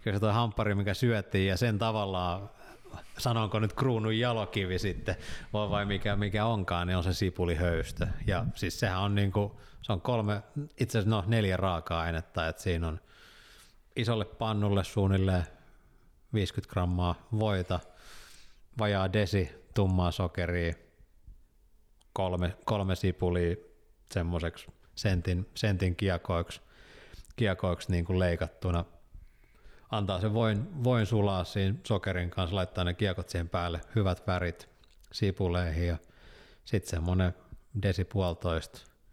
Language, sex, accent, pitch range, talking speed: Finnish, male, native, 90-105 Hz, 120 wpm